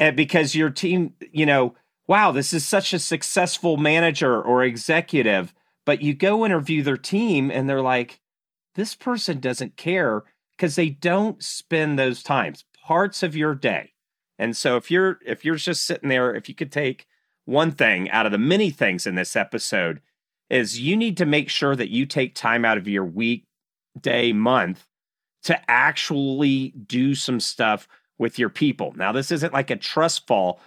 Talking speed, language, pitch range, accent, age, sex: 180 wpm, English, 120-160 Hz, American, 40-59, male